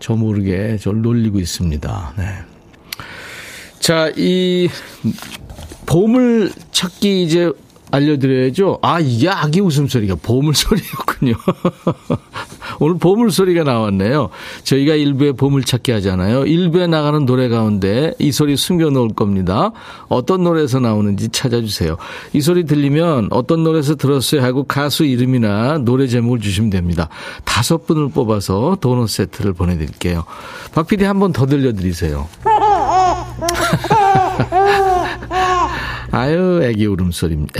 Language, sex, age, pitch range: Korean, male, 40-59, 110-170 Hz